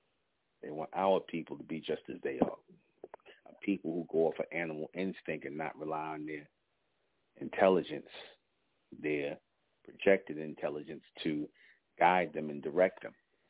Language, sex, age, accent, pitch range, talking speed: English, male, 40-59, American, 80-95 Hz, 140 wpm